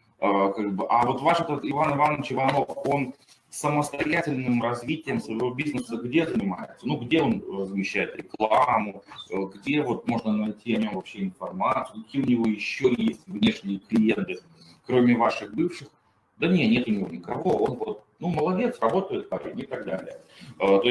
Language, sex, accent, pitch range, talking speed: Russian, male, native, 105-140 Hz, 150 wpm